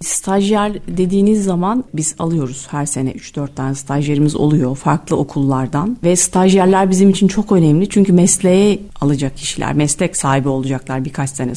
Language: Turkish